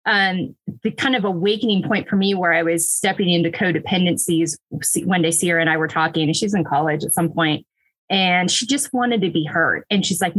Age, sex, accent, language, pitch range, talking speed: 20-39, female, American, English, 170-215 Hz, 220 wpm